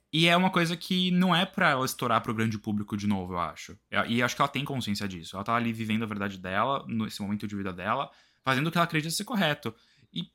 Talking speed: 255 wpm